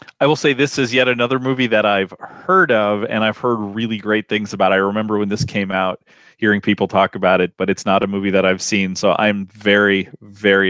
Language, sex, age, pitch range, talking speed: English, male, 30-49, 105-125 Hz, 235 wpm